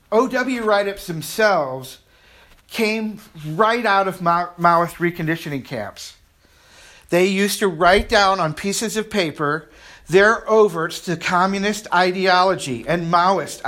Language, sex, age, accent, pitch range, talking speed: English, male, 50-69, American, 165-215 Hz, 115 wpm